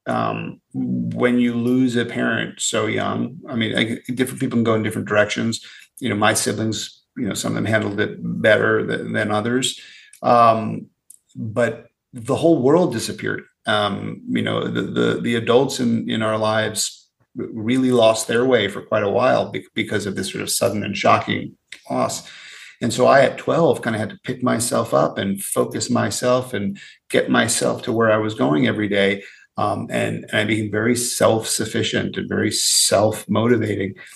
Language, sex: English, male